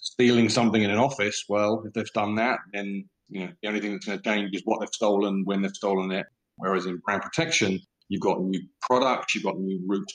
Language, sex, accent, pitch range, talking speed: English, male, British, 95-110 Hz, 235 wpm